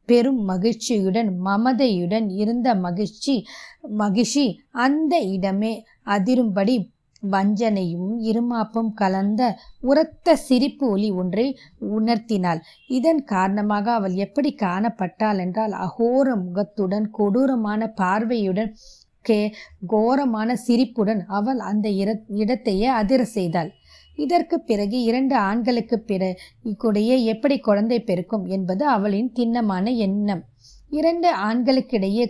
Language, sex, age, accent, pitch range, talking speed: Tamil, female, 20-39, native, 200-250 Hz, 90 wpm